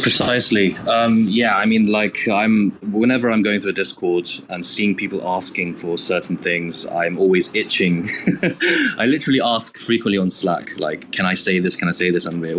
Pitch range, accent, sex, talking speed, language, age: 90-110 Hz, British, male, 190 wpm, English, 20-39